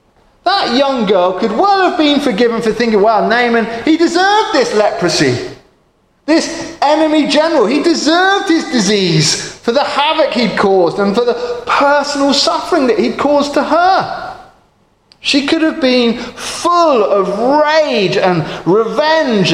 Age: 30-49